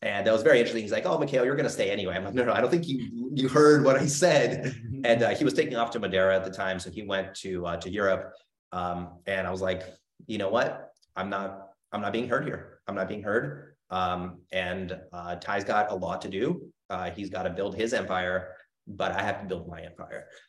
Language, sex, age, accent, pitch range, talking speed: English, male, 30-49, American, 95-115 Hz, 255 wpm